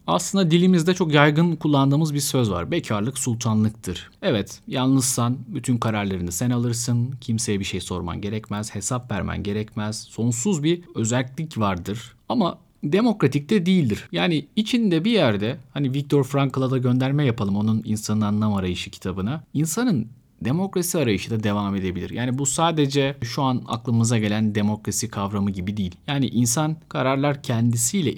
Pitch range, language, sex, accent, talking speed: 100-130 Hz, Turkish, male, native, 145 wpm